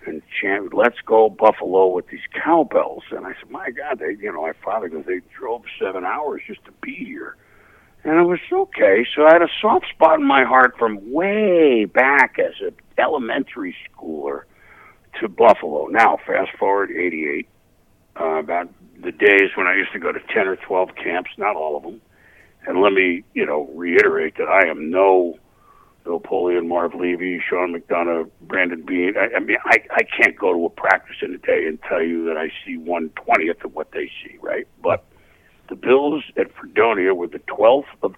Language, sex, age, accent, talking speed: English, male, 60-79, American, 190 wpm